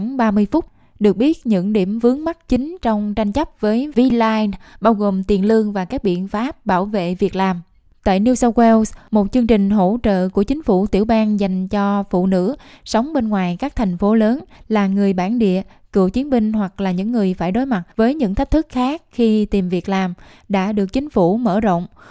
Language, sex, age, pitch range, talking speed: Vietnamese, female, 10-29, 190-230 Hz, 215 wpm